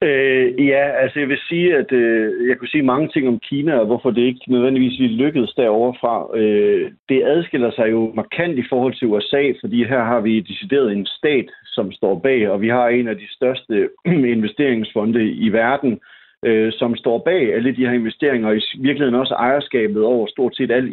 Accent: native